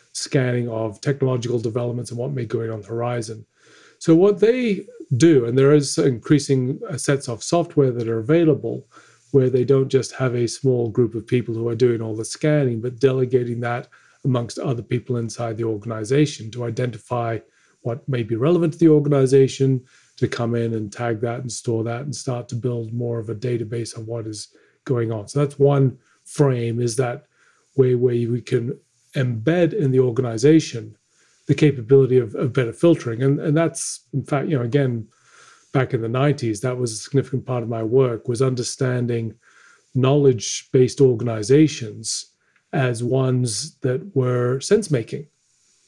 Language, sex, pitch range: English, male, 115-140 Hz